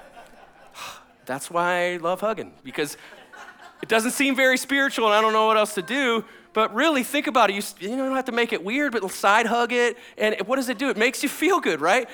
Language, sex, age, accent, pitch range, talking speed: English, male, 40-59, American, 175-250 Hz, 230 wpm